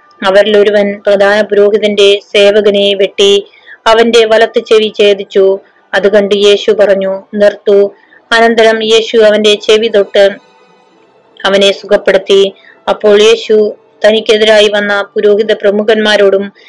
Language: Malayalam